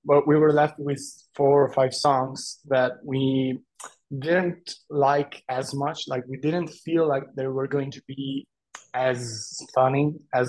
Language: English